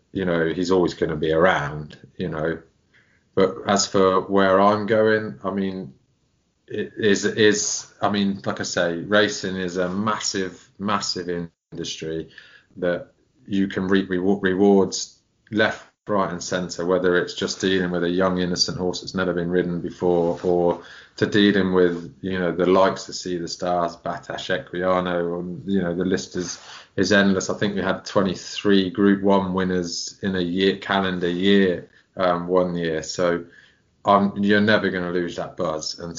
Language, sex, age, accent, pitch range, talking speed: English, male, 20-39, British, 90-100 Hz, 170 wpm